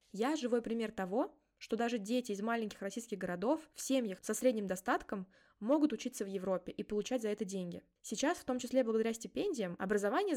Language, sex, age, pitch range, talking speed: Russian, female, 20-39, 215-280 Hz, 185 wpm